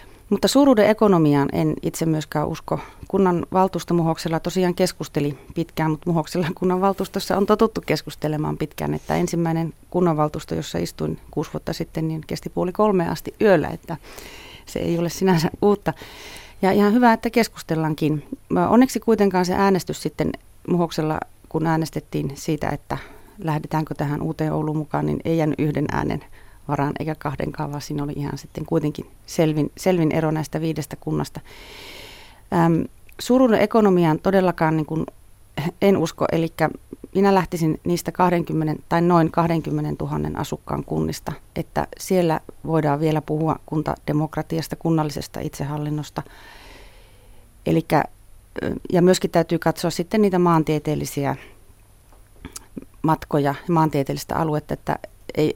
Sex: female